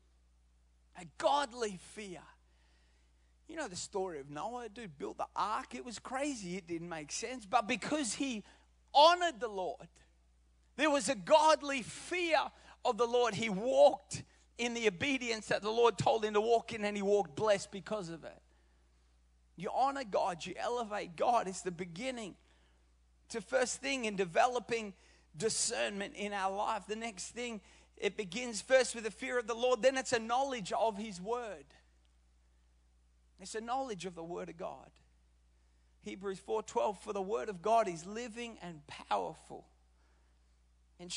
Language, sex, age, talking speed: English, male, 30-49, 160 wpm